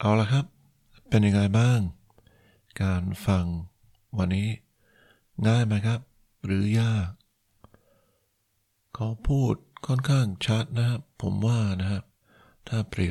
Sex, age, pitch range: male, 60-79, 95-115 Hz